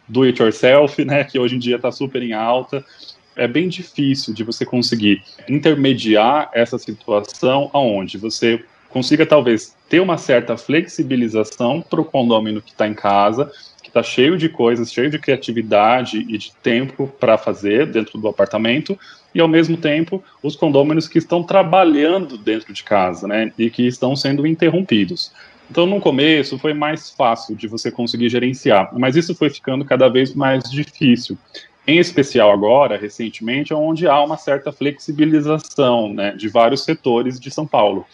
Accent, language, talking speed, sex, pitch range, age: Brazilian, Portuguese, 165 wpm, male, 115-150 Hz, 20-39